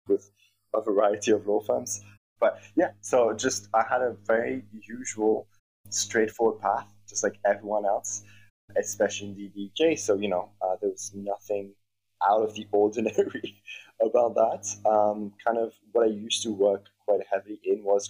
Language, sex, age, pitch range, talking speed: Romanian, male, 20-39, 100-110 Hz, 165 wpm